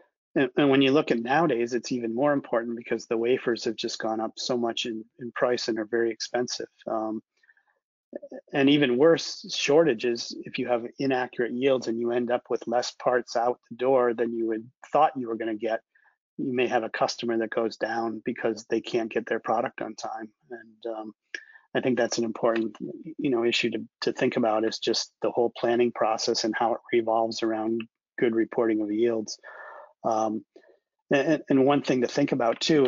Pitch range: 115-125 Hz